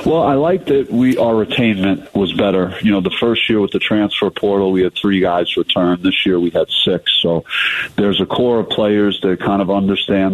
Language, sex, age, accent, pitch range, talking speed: English, male, 40-59, American, 90-100 Hz, 220 wpm